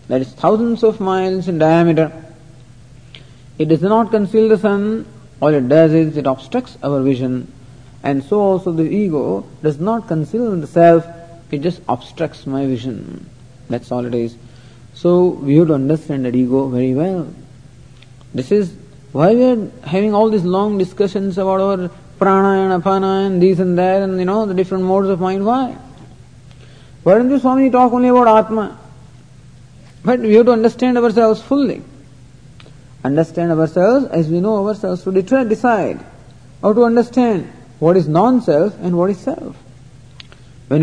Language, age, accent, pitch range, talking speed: English, 50-69, Indian, 130-205 Hz, 165 wpm